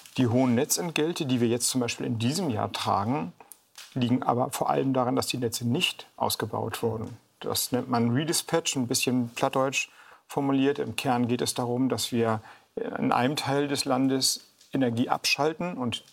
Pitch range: 120-150 Hz